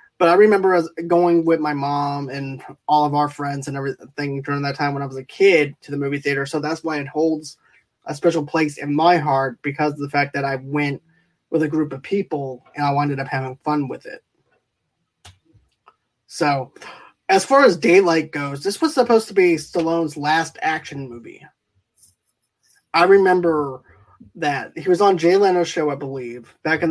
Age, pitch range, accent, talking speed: 20-39, 140-170 Hz, American, 190 wpm